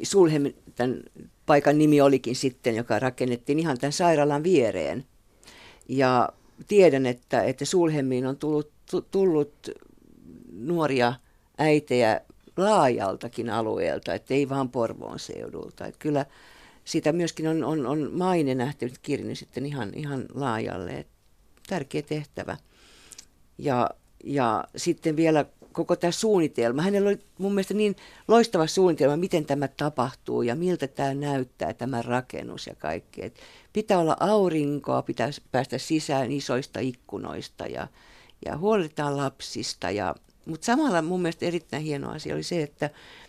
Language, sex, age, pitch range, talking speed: Finnish, female, 50-69, 130-170 Hz, 130 wpm